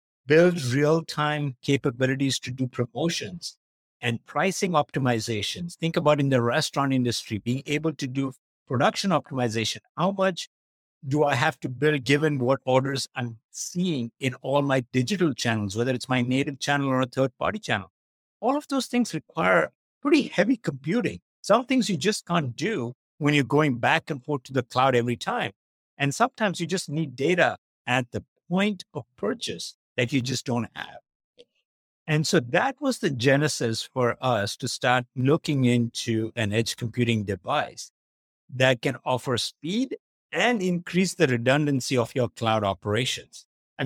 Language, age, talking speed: English, 60-79, 160 wpm